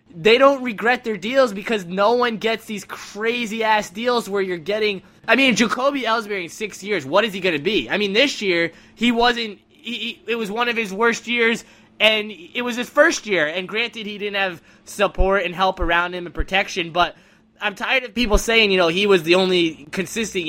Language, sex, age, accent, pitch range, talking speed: English, male, 20-39, American, 160-215 Hz, 215 wpm